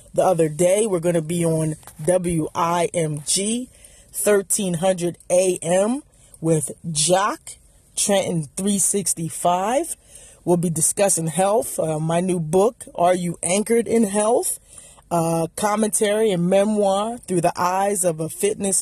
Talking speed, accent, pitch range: 120 wpm, American, 175-220 Hz